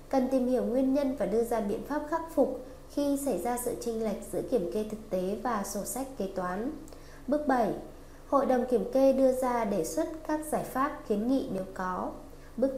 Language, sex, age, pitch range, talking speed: Vietnamese, female, 20-39, 205-265 Hz, 215 wpm